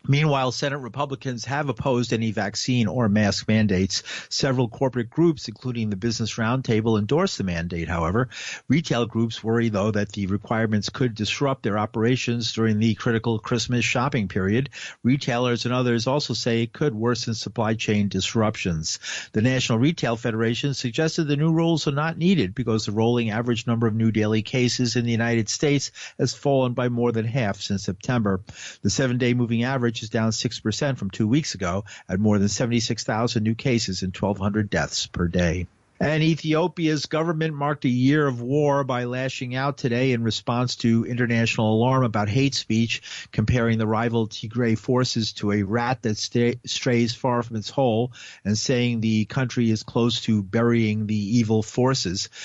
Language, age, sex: English, 50-69, male